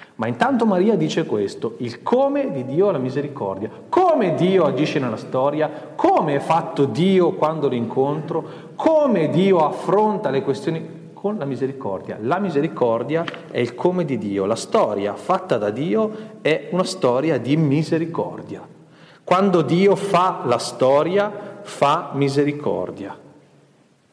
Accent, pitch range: native, 135-180 Hz